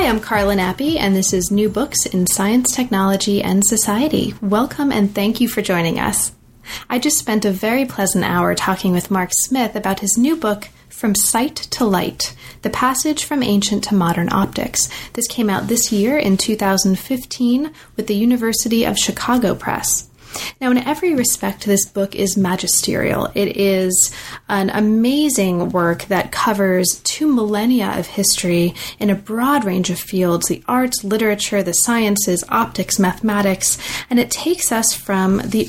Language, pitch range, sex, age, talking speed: English, 190-235 Hz, female, 30-49, 165 wpm